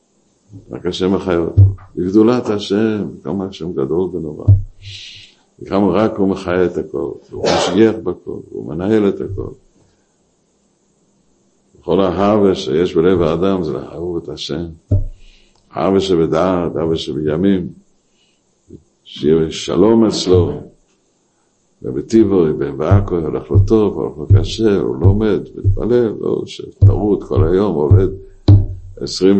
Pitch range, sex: 90-105 Hz, male